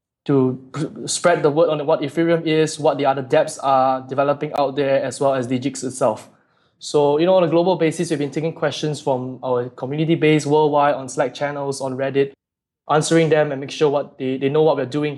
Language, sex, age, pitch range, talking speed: English, male, 20-39, 135-155 Hz, 215 wpm